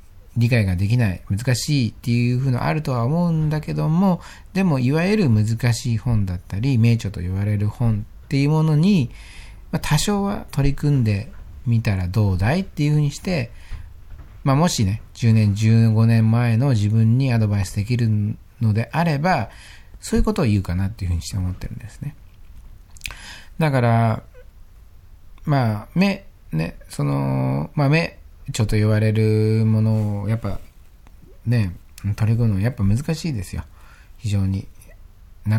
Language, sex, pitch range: Japanese, male, 95-130 Hz